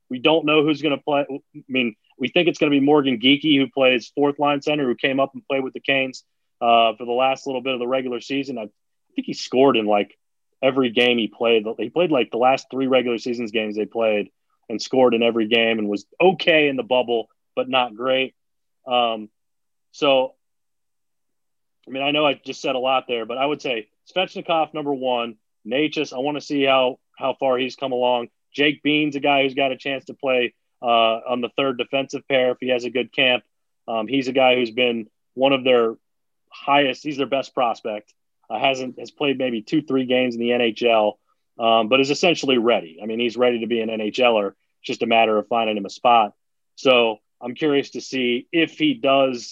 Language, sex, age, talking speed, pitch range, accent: English, male, 30-49, 220 wpm, 120-140 Hz, American